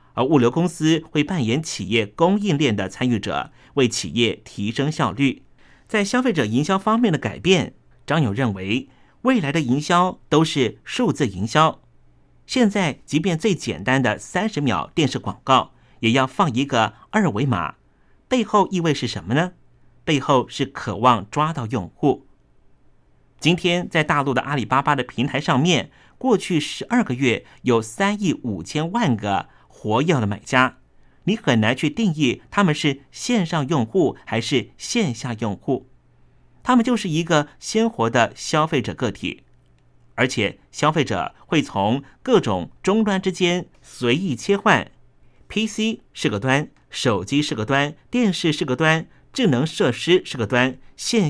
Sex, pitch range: male, 125-180 Hz